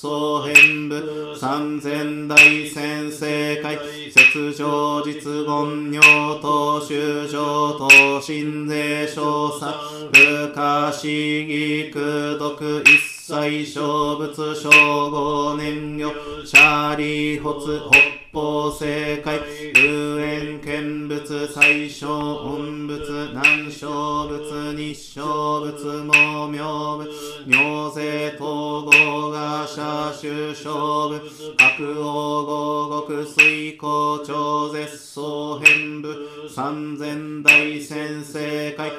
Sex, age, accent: male, 40-59, native